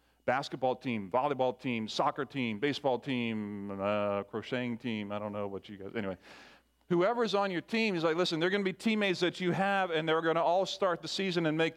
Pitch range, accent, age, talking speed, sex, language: 140-185 Hz, American, 40-59, 220 wpm, male, English